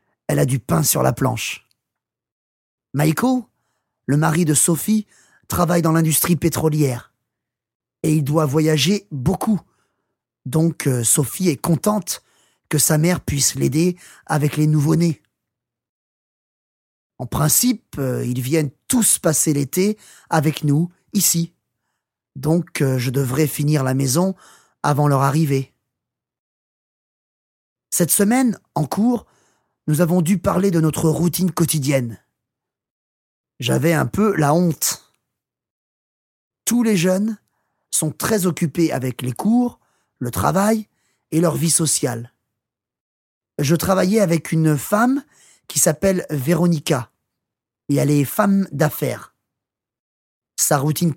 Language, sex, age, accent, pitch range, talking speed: English, male, 30-49, French, 145-180 Hz, 115 wpm